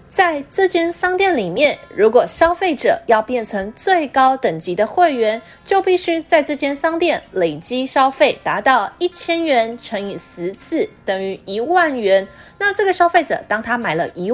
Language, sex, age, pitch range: Chinese, female, 20-39, 215-335 Hz